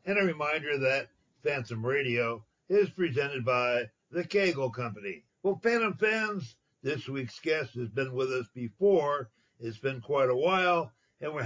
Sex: male